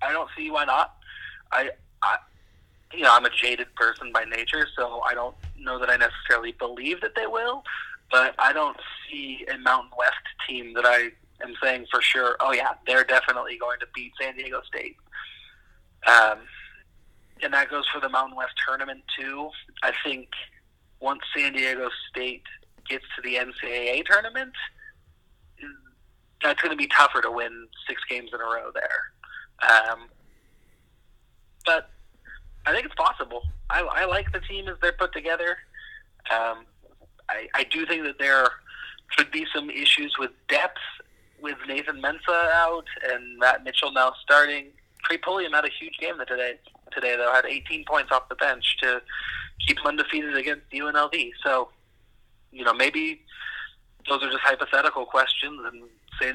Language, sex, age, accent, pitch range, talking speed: English, male, 30-49, American, 125-185 Hz, 165 wpm